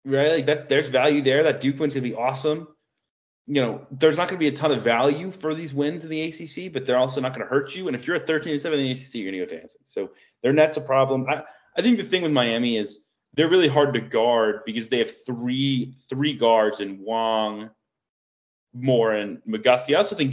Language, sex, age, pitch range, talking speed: English, male, 30-49, 115-145 Hz, 245 wpm